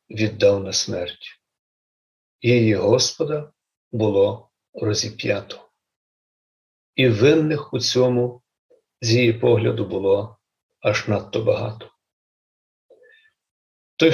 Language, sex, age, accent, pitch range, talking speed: Ukrainian, male, 50-69, native, 110-150 Hz, 85 wpm